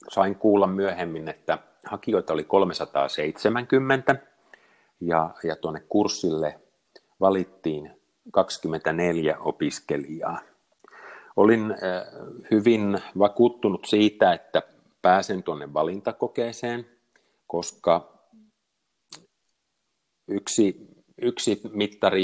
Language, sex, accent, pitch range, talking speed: Finnish, male, native, 90-110 Hz, 65 wpm